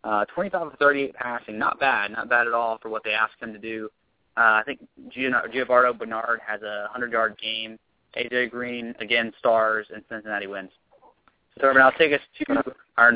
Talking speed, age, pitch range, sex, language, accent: 175 wpm, 20-39, 110-130 Hz, male, English, American